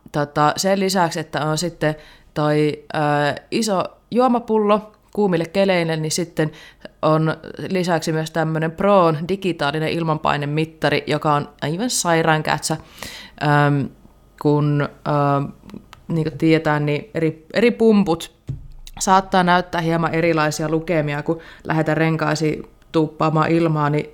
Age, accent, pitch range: 20-39, native, 155-180 Hz